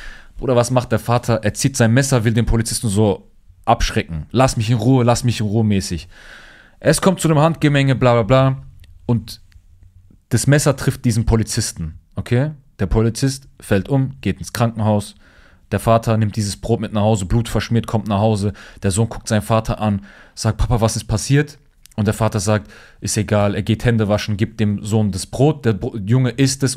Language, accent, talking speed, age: German, German, 195 wpm, 30-49